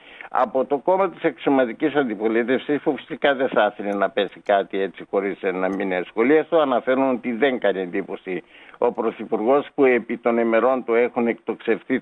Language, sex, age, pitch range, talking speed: Greek, male, 60-79, 110-140 Hz, 170 wpm